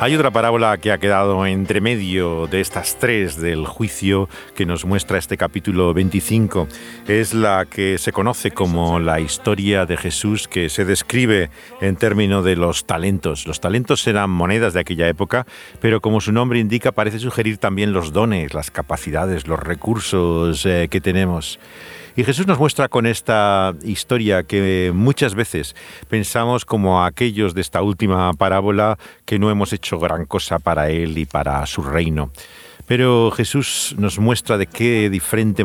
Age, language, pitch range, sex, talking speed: 50-69, Spanish, 85-110 Hz, male, 160 wpm